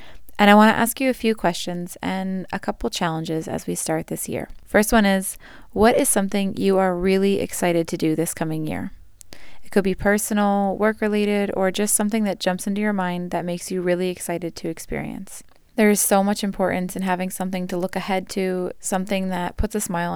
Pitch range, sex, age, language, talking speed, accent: 180-205 Hz, female, 20-39, English, 210 wpm, American